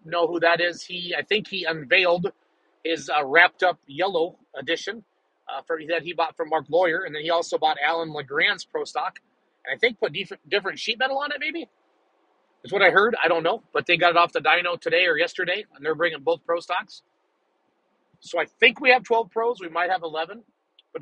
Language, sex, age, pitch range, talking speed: English, male, 30-49, 165-205 Hz, 225 wpm